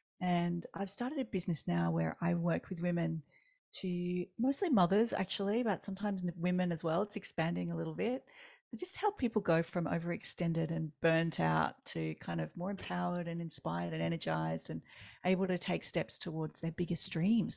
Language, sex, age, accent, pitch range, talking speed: English, female, 40-59, Australian, 165-200 Hz, 180 wpm